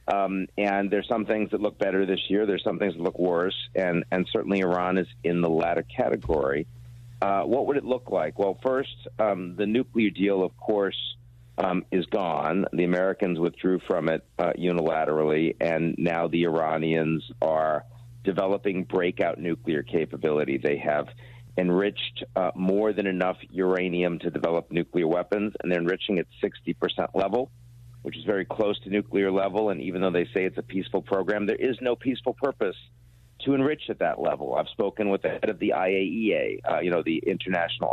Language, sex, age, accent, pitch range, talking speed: English, male, 50-69, American, 90-120 Hz, 180 wpm